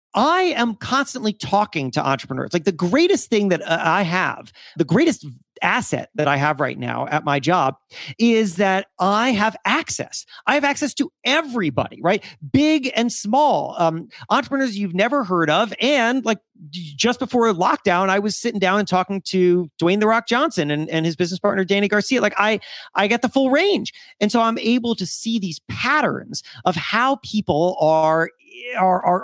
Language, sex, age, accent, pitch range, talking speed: English, male, 40-59, American, 165-235 Hz, 180 wpm